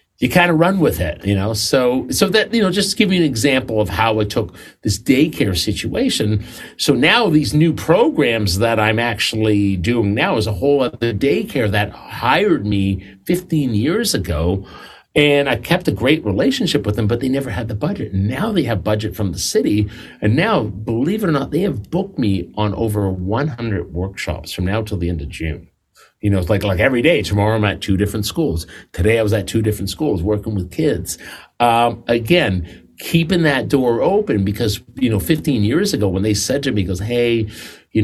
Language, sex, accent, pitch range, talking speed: English, male, American, 95-125 Hz, 210 wpm